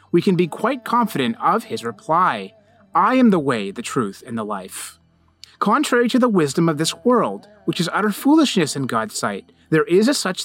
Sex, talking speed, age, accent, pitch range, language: male, 200 wpm, 30-49, American, 160-240 Hz, English